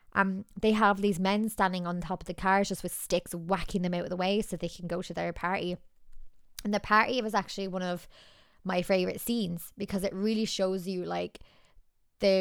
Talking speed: 215 wpm